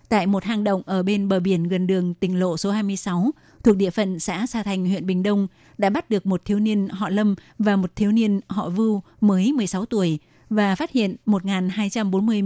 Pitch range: 190-215 Hz